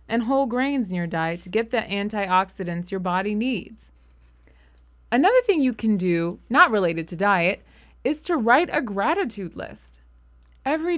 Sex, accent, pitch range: female, American, 180-250 Hz